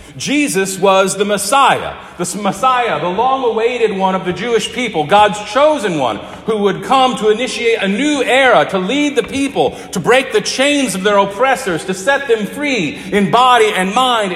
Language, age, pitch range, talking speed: English, 50-69, 140-210 Hz, 180 wpm